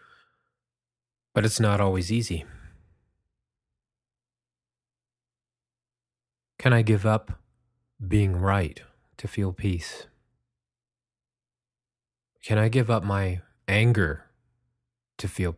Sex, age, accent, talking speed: male, 30-49, American, 85 wpm